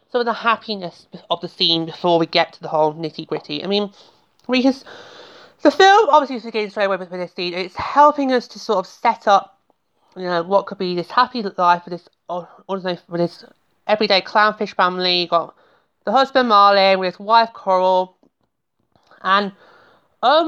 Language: English